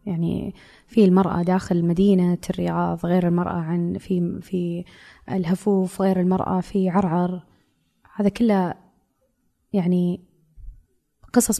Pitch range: 180-215 Hz